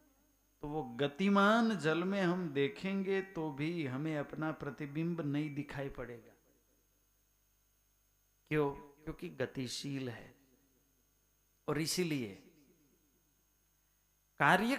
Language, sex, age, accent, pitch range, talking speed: Hindi, male, 50-69, native, 130-170 Hz, 90 wpm